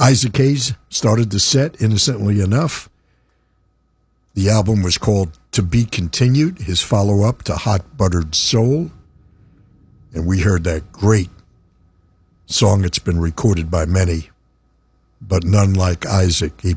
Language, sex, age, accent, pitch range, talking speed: English, male, 60-79, American, 85-110 Hz, 130 wpm